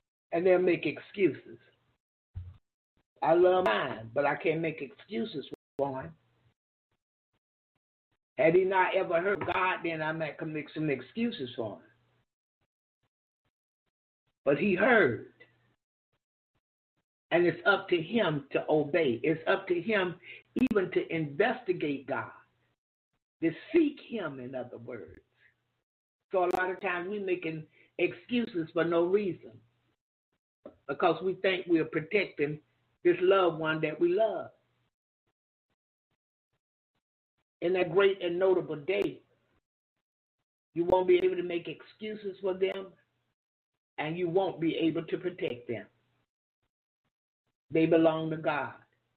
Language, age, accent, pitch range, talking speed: English, 50-69, American, 155-190 Hz, 125 wpm